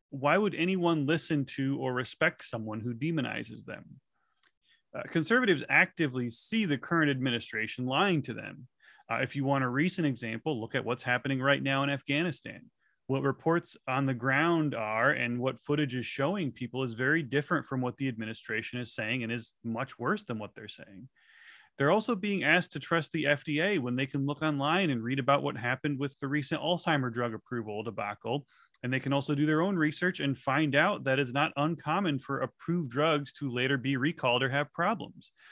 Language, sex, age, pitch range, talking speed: English, male, 30-49, 130-160 Hz, 195 wpm